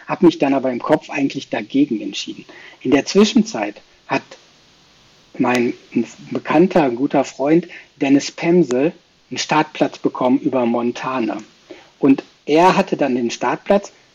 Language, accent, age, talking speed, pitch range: German, German, 60-79, 125 wpm, 130-185 Hz